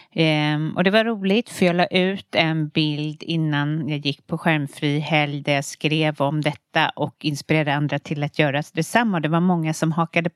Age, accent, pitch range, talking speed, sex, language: 40-59, Swedish, 150-200 Hz, 190 wpm, female, English